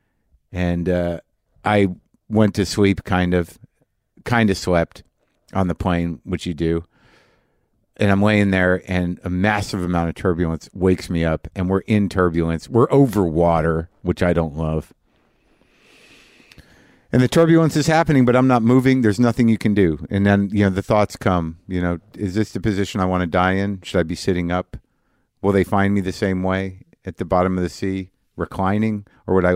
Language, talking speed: English, 195 wpm